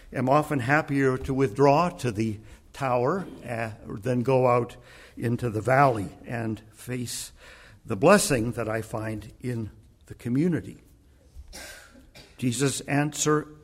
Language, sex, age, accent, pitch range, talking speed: English, male, 60-79, American, 115-150 Hz, 120 wpm